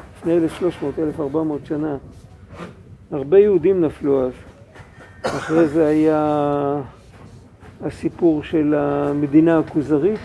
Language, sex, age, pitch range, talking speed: Hebrew, male, 50-69, 145-195 Hz, 75 wpm